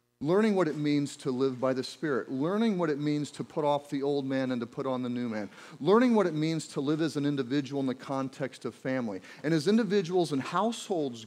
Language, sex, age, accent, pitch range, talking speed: English, male, 40-59, American, 130-175 Hz, 240 wpm